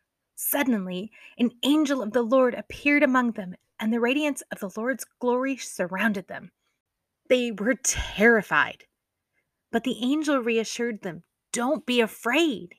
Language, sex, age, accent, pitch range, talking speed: English, female, 30-49, American, 200-265 Hz, 135 wpm